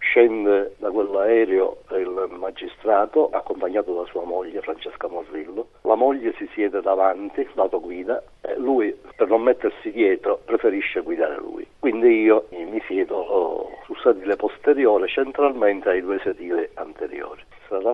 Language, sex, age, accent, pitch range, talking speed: Italian, male, 60-79, native, 310-430 Hz, 135 wpm